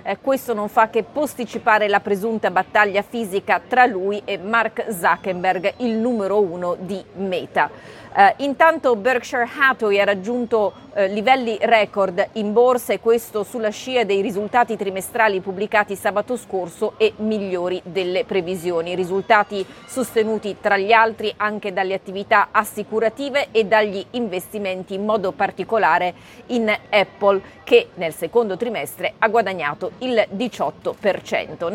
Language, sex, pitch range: Italian, female, 200-240 Hz